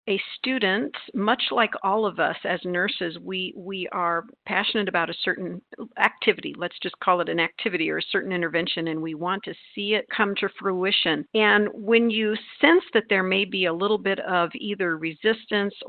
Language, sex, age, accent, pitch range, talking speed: English, female, 50-69, American, 170-215 Hz, 190 wpm